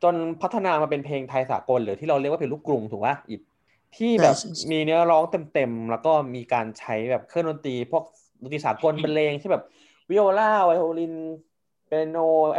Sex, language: male, Thai